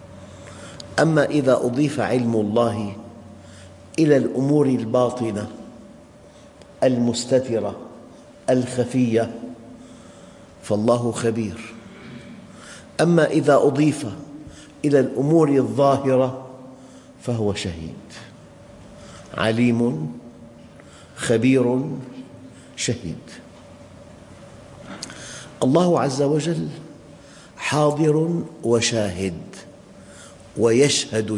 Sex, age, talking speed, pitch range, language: male, 50-69, 55 wpm, 110-140 Hz, English